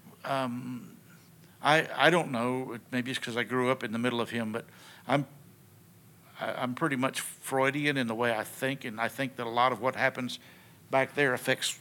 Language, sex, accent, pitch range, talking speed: English, male, American, 115-140 Hz, 200 wpm